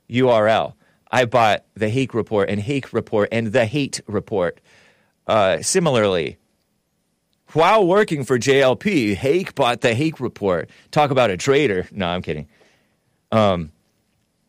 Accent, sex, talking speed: American, male, 135 wpm